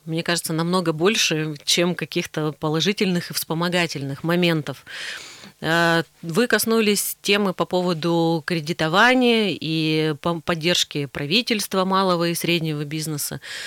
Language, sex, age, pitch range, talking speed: Russian, female, 30-49, 155-190 Hz, 100 wpm